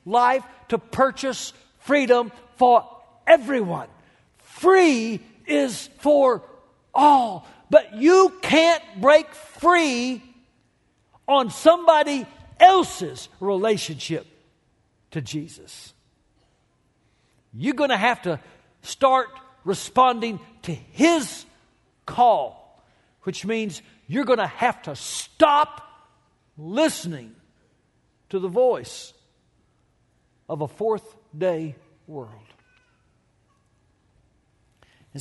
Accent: American